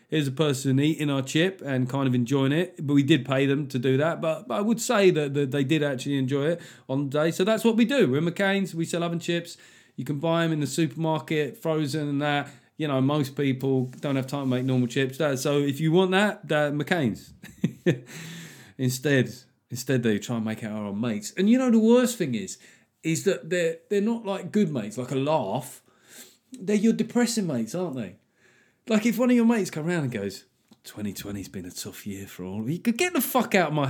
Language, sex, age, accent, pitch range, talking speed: English, male, 30-49, British, 125-185 Hz, 235 wpm